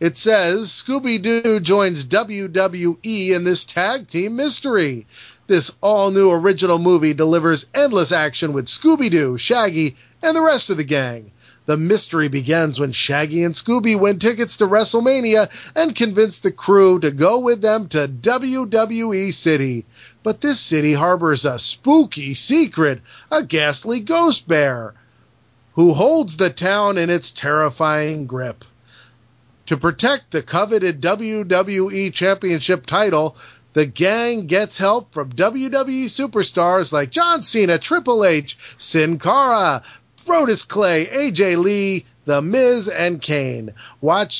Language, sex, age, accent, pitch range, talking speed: English, male, 40-59, American, 150-220 Hz, 130 wpm